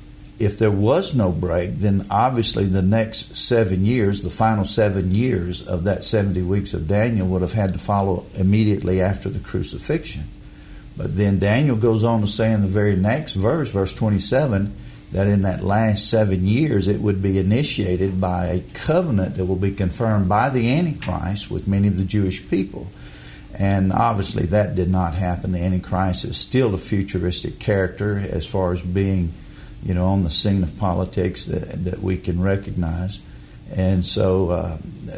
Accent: American